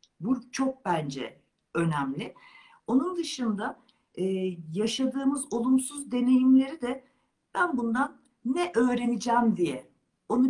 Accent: native